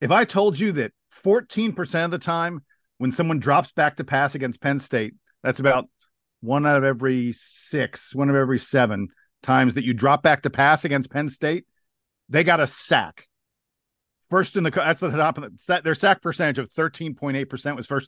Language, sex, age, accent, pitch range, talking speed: English, male, 50-69, American, 120-155 Hz, 210 wpm